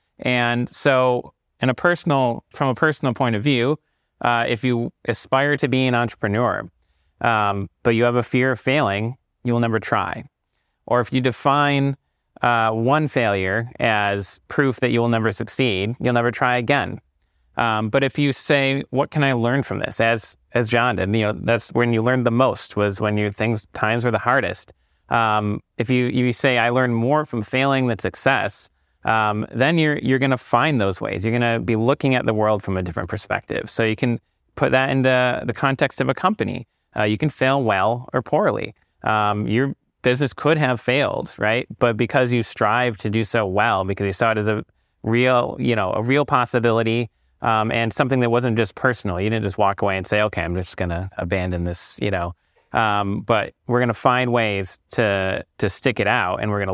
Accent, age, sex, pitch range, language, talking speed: American, 30-49, male, 105-130 Hz, English, 210 wpm